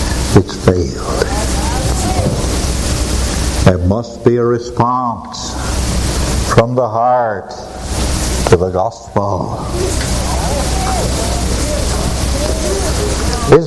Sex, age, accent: male, 60-79, American